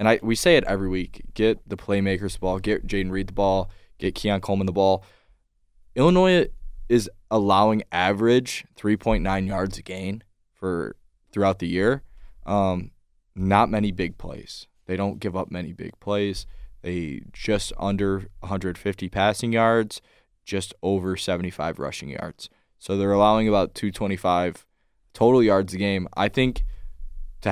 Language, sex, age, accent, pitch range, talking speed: English, male, 20-39, American, 95-105 Hz, 150 wpm